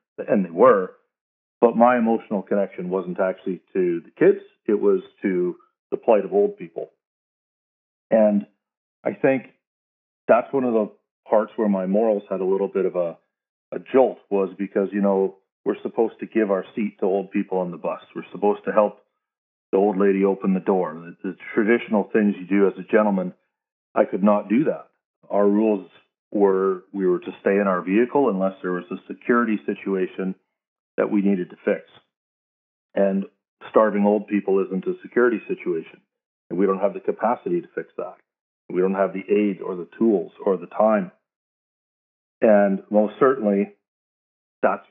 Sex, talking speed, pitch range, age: male, 175 wpm, 95-110 Hz, 40-59